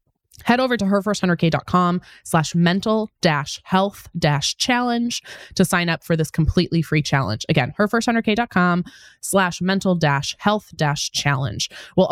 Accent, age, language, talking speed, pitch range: American, 20-39, English, 95 wpm, 155-200 Hz